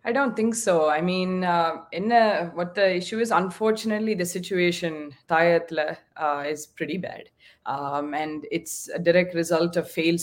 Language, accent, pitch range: Tamil, native, 165-215 Hz